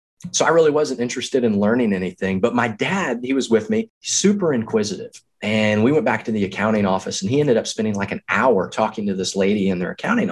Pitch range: 95-125 Hz